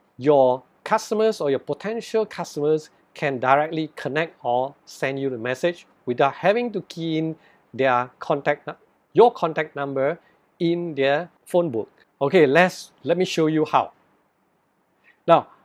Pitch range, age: 140-185 Hz, 50-69